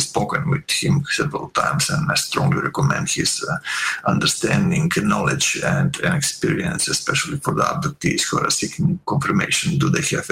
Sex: male